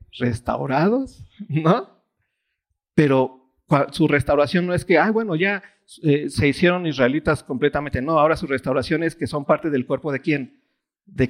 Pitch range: 135-195 Hz